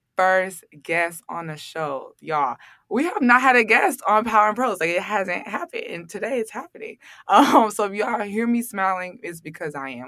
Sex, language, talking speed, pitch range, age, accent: female, English, 210 wpm, 150-185 Hz, 20-39, American